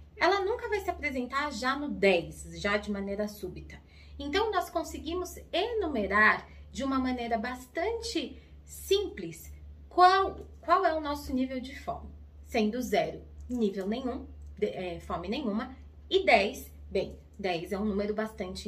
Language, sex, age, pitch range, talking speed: Portuguese, female, 20-39, 200-305 Hz, 145 wpm